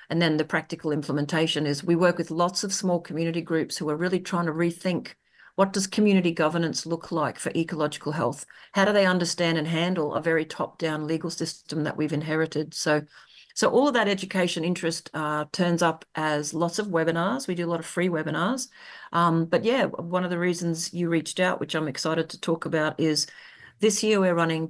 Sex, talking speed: female, 205 wpm